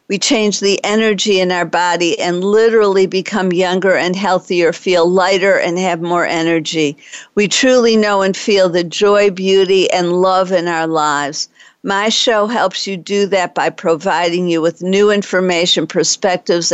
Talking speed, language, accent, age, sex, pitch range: 160 wpm, English, American, 50-69, female, 165-195 Hz